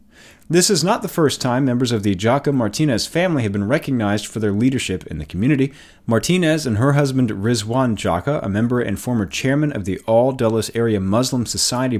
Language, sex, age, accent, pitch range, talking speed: English, male, 30-49, American, 95-140 Hz, 185 wpm